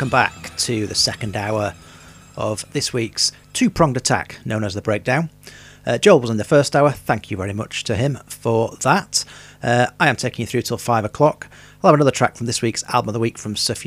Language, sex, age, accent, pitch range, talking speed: English, male, 40-59, British, 110-140 Hz, 220 wpm